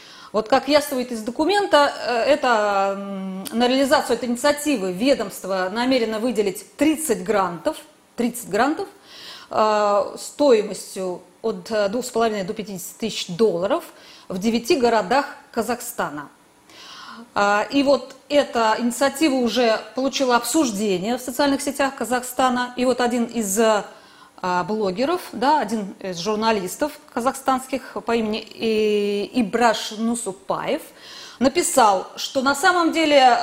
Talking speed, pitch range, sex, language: 100 wpm, 215-280 Hz, female, Russian